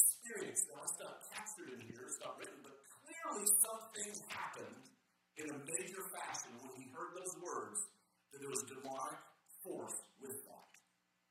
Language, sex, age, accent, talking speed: English, male, 50-69, American, 170 wpm